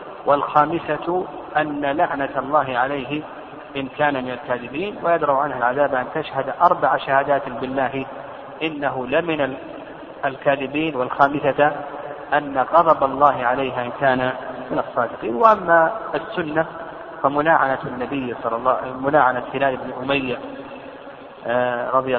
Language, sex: Arabic, male